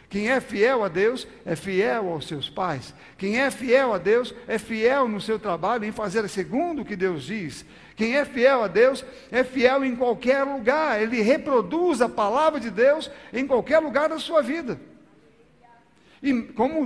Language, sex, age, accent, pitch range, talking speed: Portuguese, male, 60-79, Brazilian, 235-290 Hz, 180 wpm